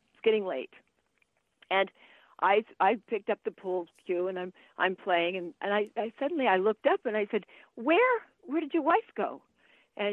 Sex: female